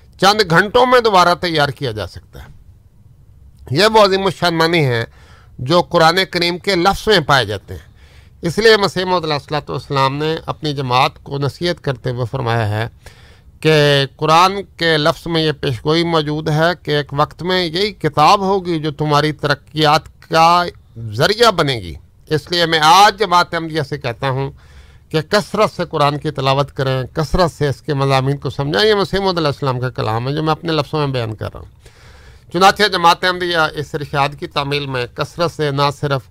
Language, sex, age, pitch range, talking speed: Urdu, male, 50-69, 135-170 Hz, 180 wpm